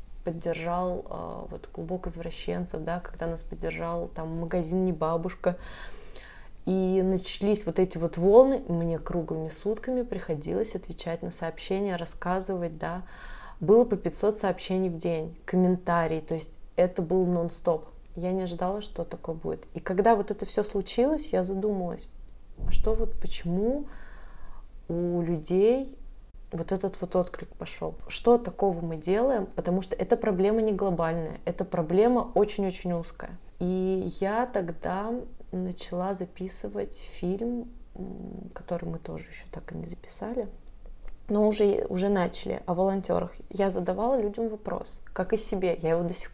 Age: 20-39